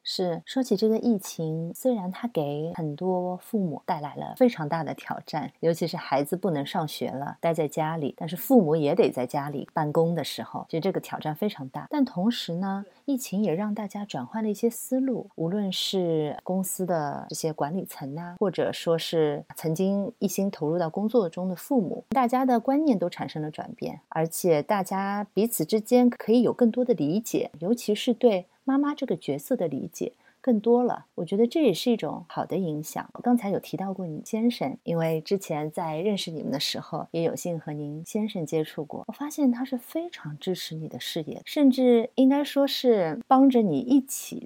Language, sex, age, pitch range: Chinese, female, 30-49, 160-240 Hz